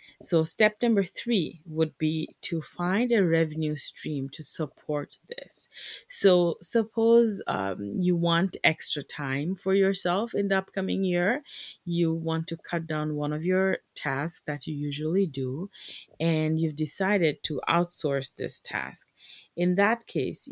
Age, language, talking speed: 30-49, English, 145 wpm